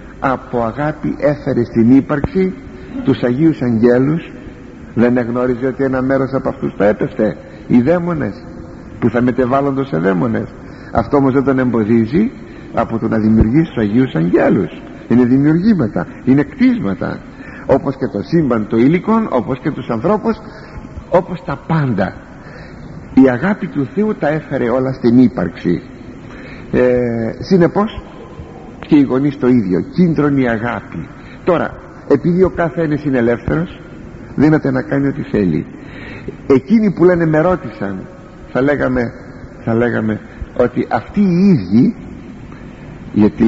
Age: 60-79